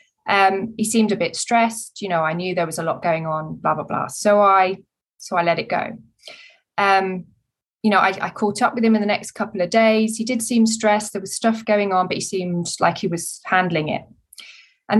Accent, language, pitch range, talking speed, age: British, English, 180-220 Hz, 235 wpm, 20-39